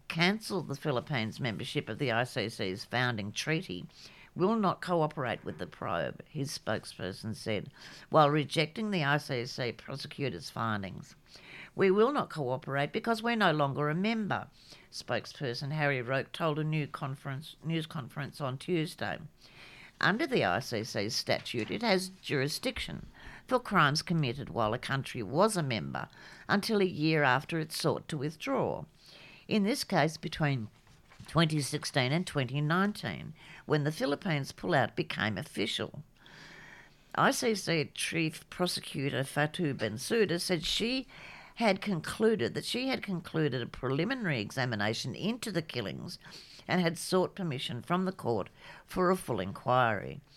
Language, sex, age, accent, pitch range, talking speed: English, female, 60-79, Australian, 130-180 Hz, 135 wpm